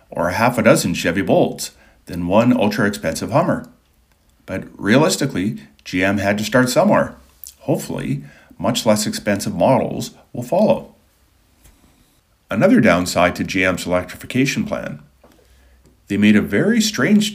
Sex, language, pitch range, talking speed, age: male, English, 85-115 Hz, 125 wpm, 50-69